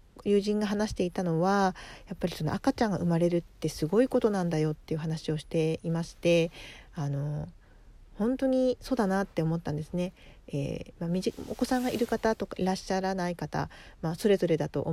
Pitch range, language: 155-200 Hz, Japanese